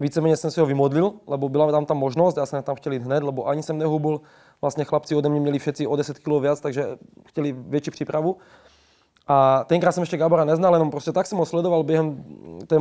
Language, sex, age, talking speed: Czech, male, 20-39, 220 wpm